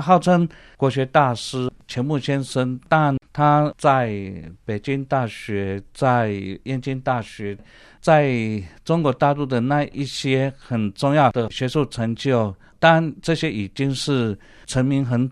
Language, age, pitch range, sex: Chinese, 50-69, 110-150 Hz, male